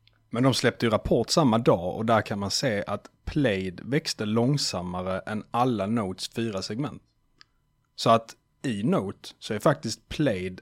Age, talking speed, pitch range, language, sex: 30-49, 165 wpm, 100-125 Hz, Swedish, male